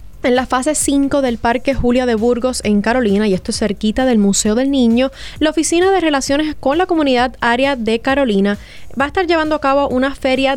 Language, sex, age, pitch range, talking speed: Spanish, female, 20-39, 230-290 Hz, 210 wpm